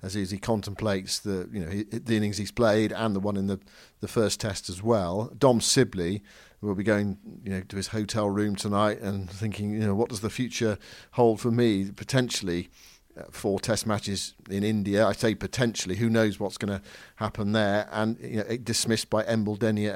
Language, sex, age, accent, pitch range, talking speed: English, male, 50-69, British, 100-120 Hz, 205 wpm